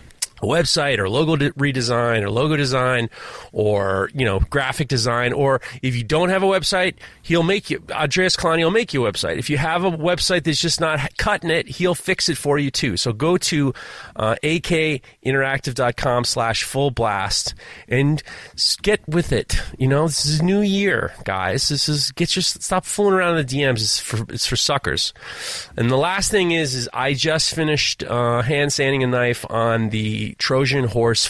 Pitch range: 110-150 Hz